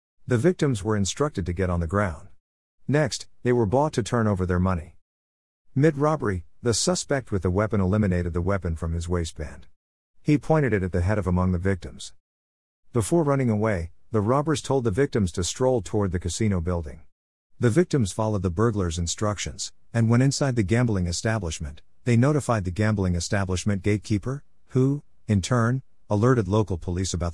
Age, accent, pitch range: 50-69, American, 85-120 Hz